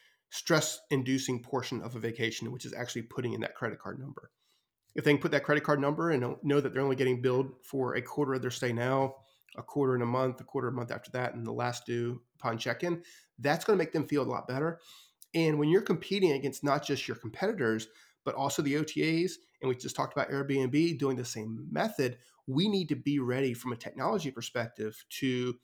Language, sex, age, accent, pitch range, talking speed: English, male, 30-49, American, 125-155 Hz, 220 wpm